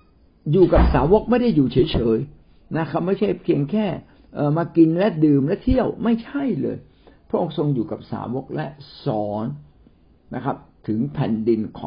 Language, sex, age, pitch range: Thai, male, 60-79, 110-170 Hz